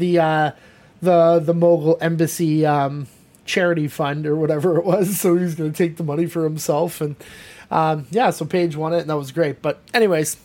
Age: 20-39